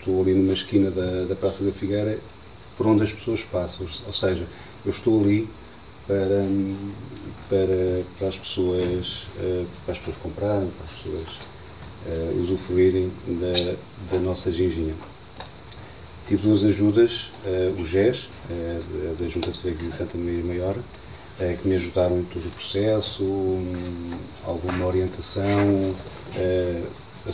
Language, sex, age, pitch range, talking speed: Portuguese, male, 40-59, 90-100 Hz, 125 wpm